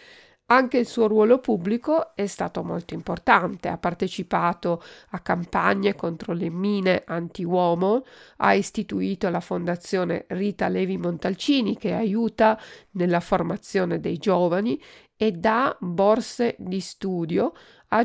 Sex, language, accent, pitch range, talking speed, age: female, Italian, native, 180-230 Hz, 120 wpm, 50-69